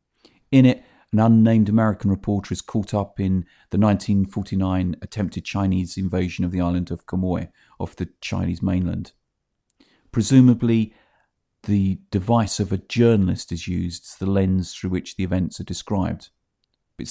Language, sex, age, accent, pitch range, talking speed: English, male, 40-59, British, 90-115 Hz, 145 wpm